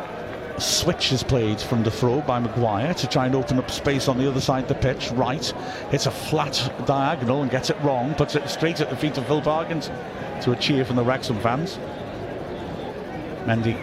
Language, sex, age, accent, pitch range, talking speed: English, male, 50-69, British, 125-145 Hz, 205 wpm